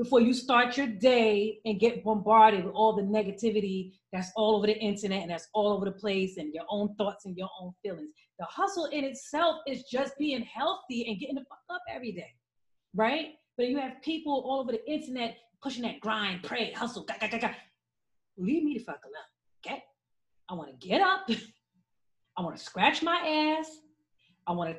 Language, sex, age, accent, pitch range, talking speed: English, female, 30-49, American, 210-295 Hz, 200 wpm